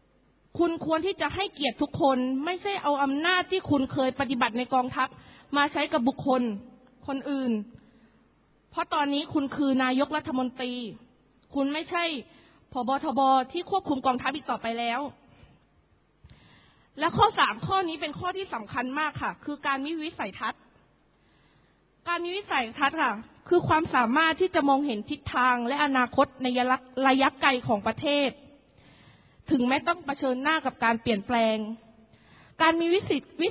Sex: female